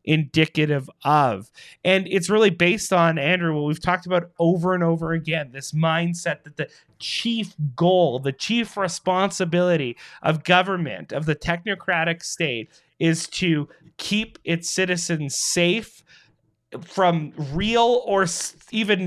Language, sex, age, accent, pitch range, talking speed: English, male, 30-49, American, 150-180 Hz, 130 wpm